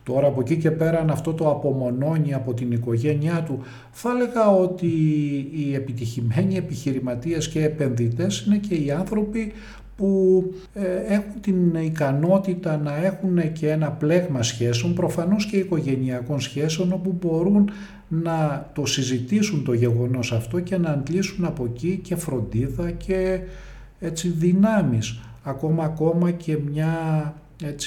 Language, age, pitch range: Greek, 50-69, 125-165 Hz